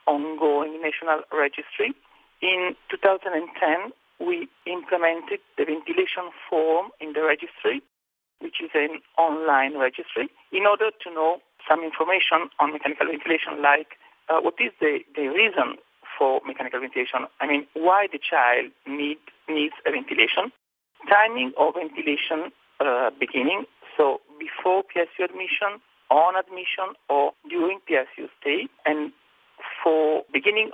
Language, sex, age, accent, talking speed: English, male, 40-59, Italian, 125 wpm